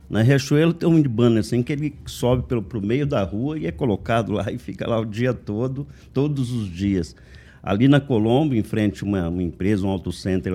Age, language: 50-69, Portuguese